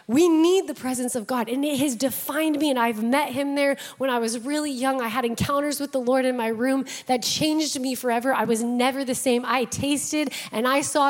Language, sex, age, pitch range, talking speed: English, female, 20-39, 240-305 Hz, 240 wpm